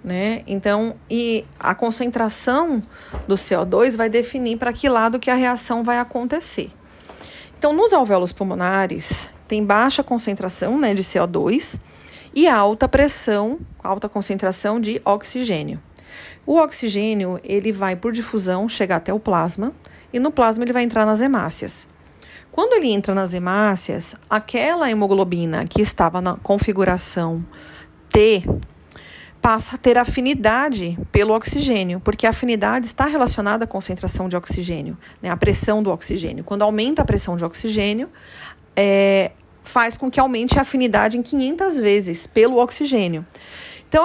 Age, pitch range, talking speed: 40-59, 195-250 Hz, 140 wpm